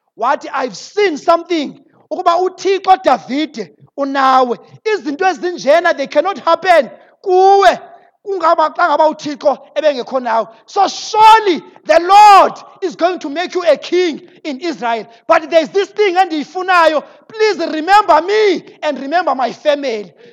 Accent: South African